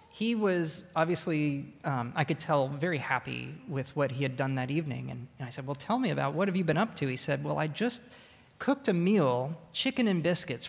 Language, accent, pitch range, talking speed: English, American, 140-185 Hz, 230 wpm